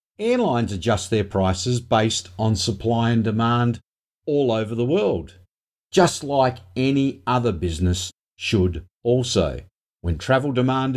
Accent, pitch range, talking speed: Australian, 105-145 Hz, 125 wpm